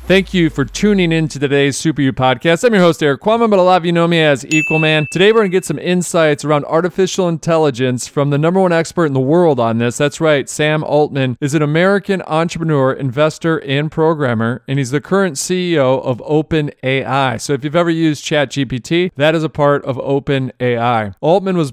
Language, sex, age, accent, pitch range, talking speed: English, male, 40-59, American, 130-160 Hz, 215 wpm